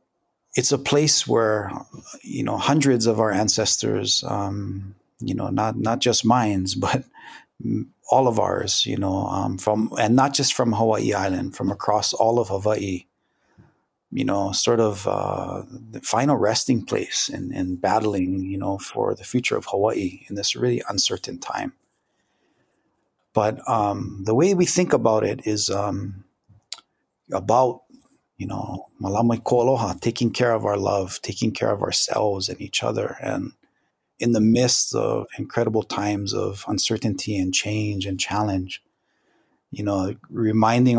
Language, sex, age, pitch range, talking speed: English, male, 30-49, 95-115 Hz, 150 wpm